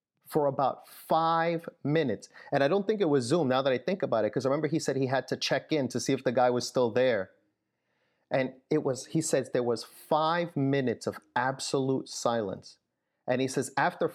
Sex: male